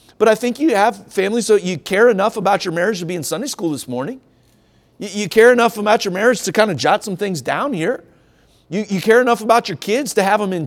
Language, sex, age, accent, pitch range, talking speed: English, male, 40-59, American, 165-230 Hz, 260 wpm